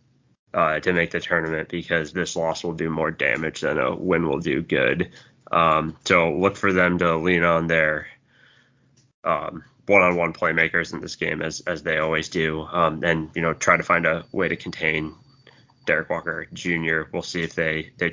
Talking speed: 190 wpm